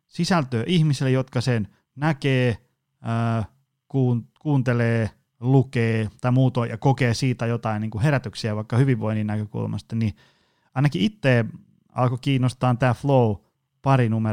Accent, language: native, Finnish